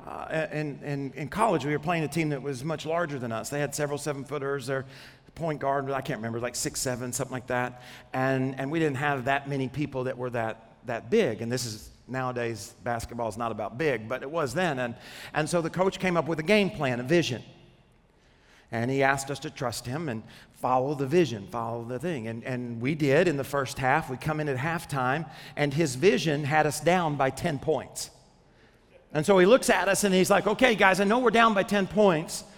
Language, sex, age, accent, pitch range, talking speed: English, male, 40-59, American, 130-195 Hz, 230 wpm